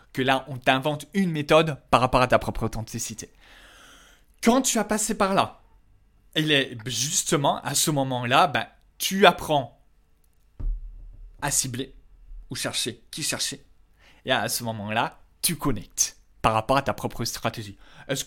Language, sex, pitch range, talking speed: French, male, 120-165 Hz, 150 wpm